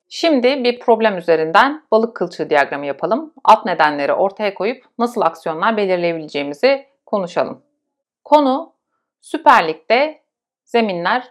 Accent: native